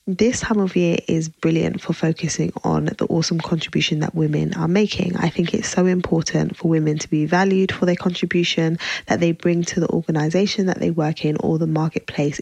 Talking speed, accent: 205 wpm, British